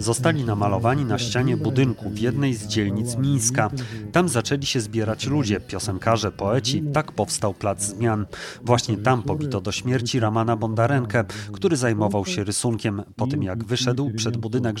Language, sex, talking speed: Polish, male, 155 wpm